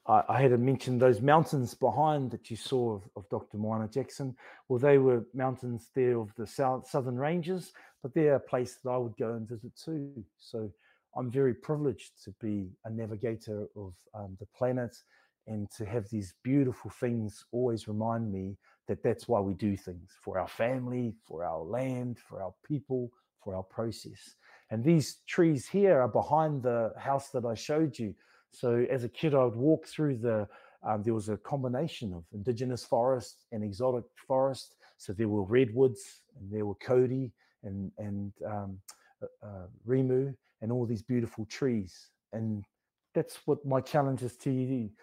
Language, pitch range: English, 110-135 Hz